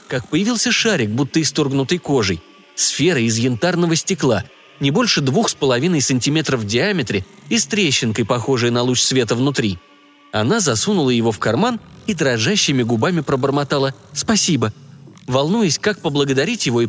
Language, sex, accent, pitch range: Russian, male, native, 115-175 Hz